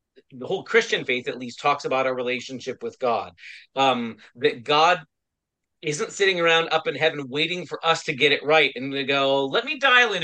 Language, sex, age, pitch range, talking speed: English, male, 30-49, 125-160 Hz, 205 wpm